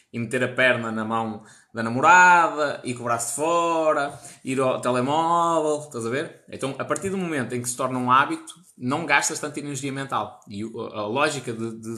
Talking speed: 185 wpm